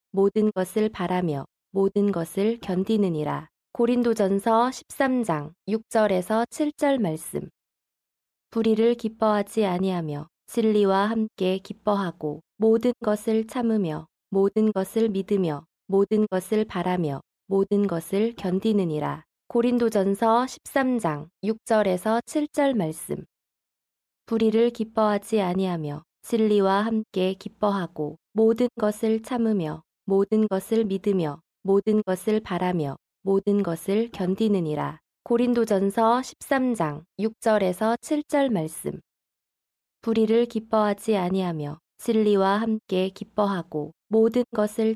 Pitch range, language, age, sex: 185-225 Hz, Korean, 20-39, female